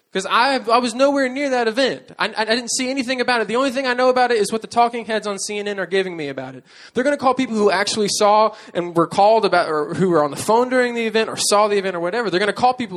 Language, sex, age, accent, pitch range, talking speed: English, male, 20-39, American, 175-235 Hz, 305 wpm